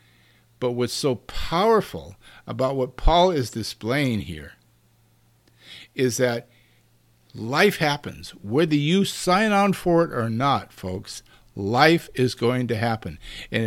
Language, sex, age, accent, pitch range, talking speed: English, male, 50-69, American, 115-160 Hz, 125 wpm